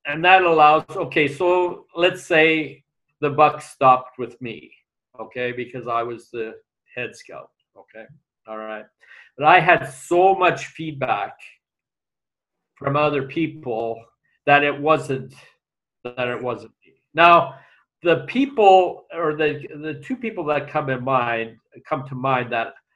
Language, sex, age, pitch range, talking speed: English, male, 50-69, 130-160 Hz, 140 wpm